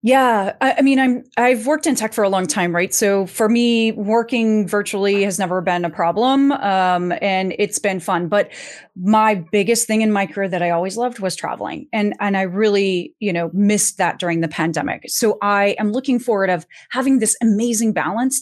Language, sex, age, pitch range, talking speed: English, female, 30-49, 185-235 Hz, 205 wpm